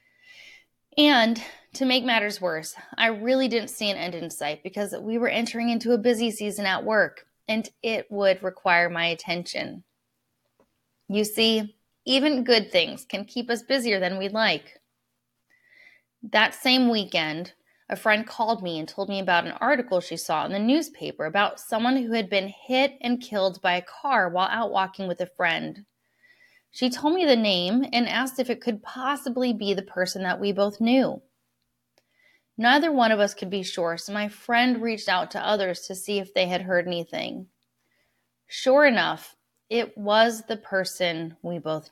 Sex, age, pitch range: female, 20-39, 185-240 Hz